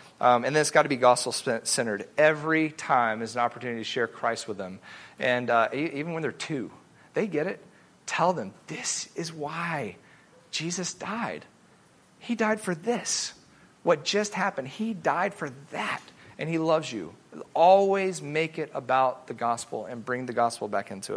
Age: 40-59